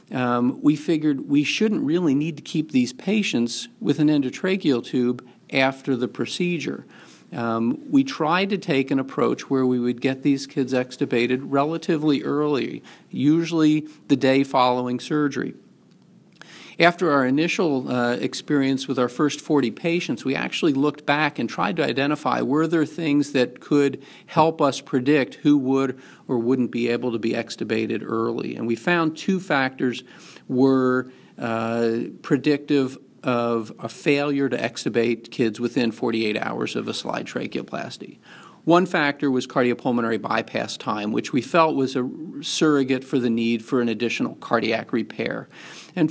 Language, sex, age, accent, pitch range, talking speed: English, male, 50-69, American, 120-150 Hz, 150 wpm